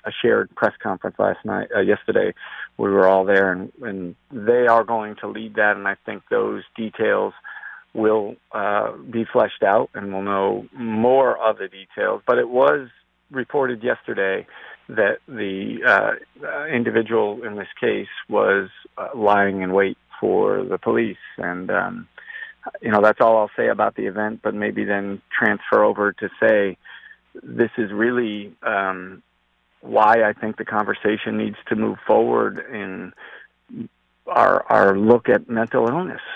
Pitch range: 95-115 Hz